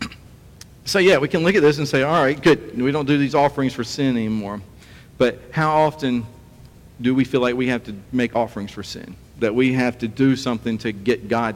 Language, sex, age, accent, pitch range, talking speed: English, male, 50-69, American, 115-145 Hz, 225 wpm